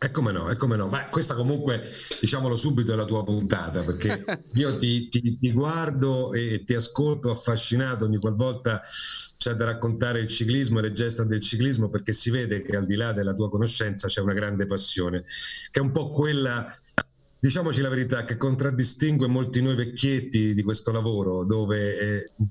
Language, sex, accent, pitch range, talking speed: Italian, male, native, 110-130 Hz, 185 wpm